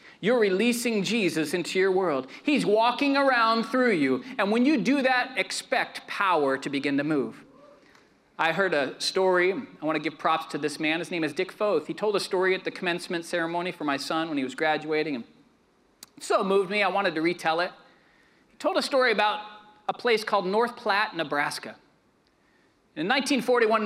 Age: 40-59